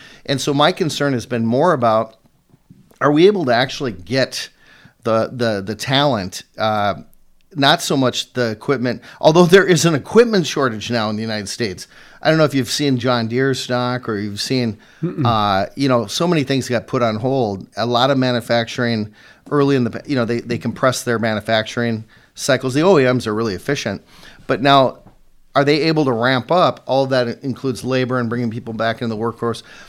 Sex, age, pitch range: male, 40-59, 115-140 Hz